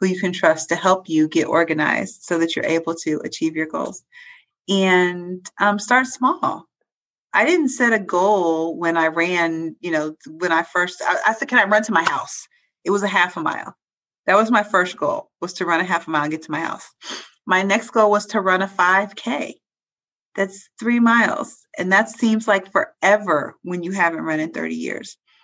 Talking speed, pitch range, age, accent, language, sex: 210 wpm, 175-225 Hz, 30-49, American, English, female